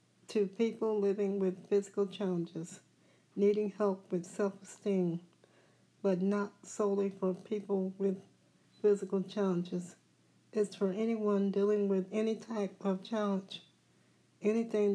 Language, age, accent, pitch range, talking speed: English, 60-79, American, 185-210 Hz, 110 wpm